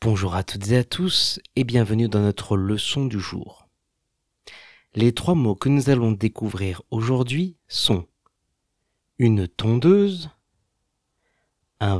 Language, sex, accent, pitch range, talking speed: French, male, French, 100-145 Hz, 125 wpm